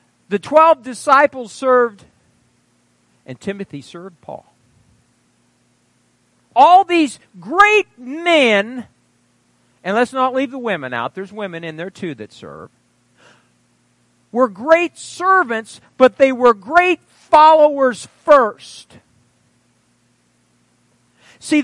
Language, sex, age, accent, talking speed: English, male, 50-69, American, 100 wpm